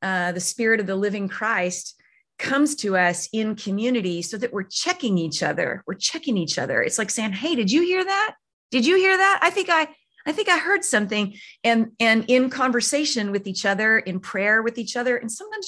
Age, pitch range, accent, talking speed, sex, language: 30-49, 190-240 Hz, American, 215 wpm, female, English